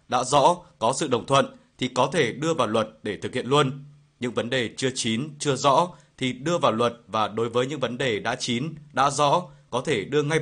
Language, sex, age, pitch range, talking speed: Vietnamese, male, 20-39, 120-145 Hz, 235 wpm